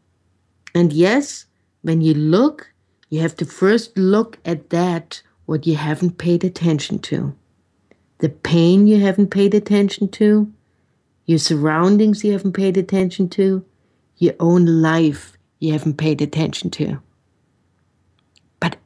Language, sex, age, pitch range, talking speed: English, female, 60-79, 155-200 Hz, 130 wpm